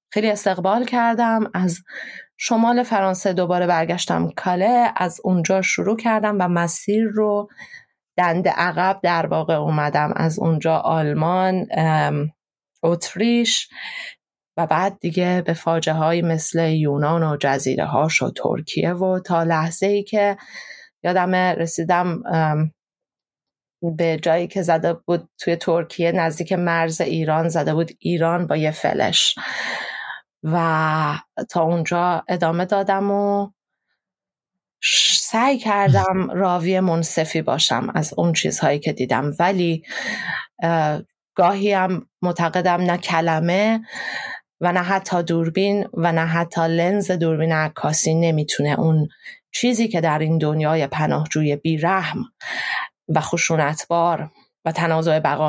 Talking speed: 115 wpm